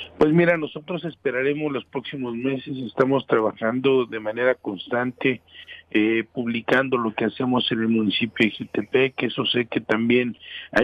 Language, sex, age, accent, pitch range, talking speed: Spanish, male, 50-69, Mexican, 120-145 Hz, 150 wpm